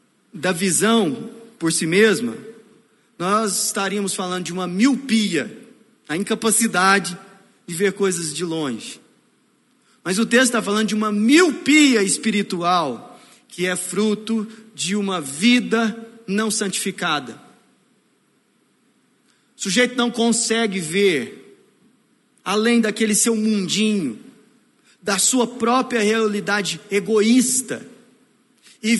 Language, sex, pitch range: Portuguese, male, 200-245 Hz